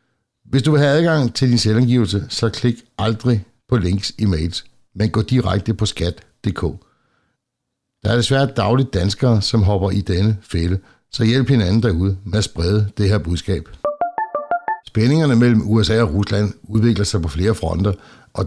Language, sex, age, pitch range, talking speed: Danish, male, 60-79, 95-115 Hz, 165 wpm